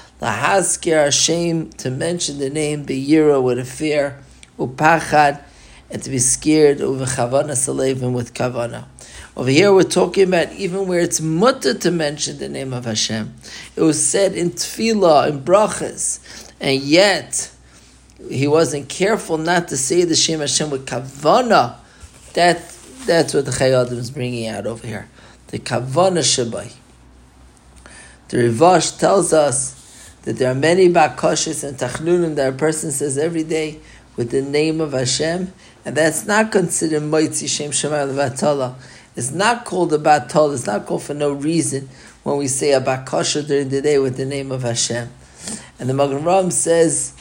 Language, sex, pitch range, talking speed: English, male, 130-160 Hz, 160 wpm